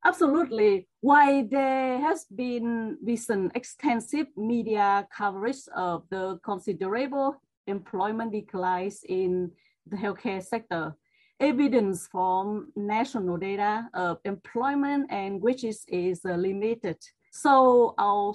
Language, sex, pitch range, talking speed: English, female, 190-250 Hz, 105 wpm